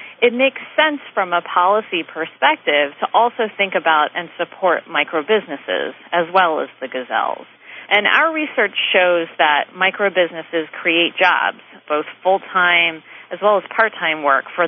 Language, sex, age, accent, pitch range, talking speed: English, female, 40-59, American, 165-210 Hz, 145 wpm